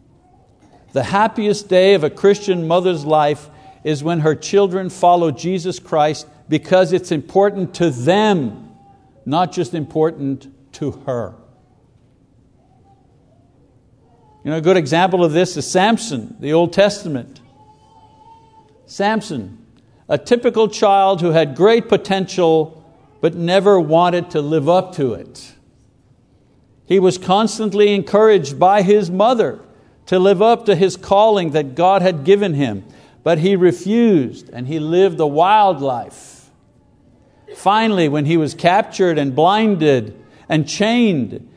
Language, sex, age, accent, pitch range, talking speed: English, male, 60-79, American, 150-200 Hz, 130 wpm